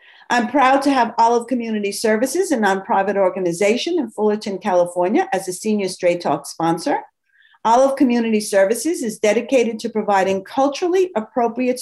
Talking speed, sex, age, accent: 140 wpm, female, 50-69, American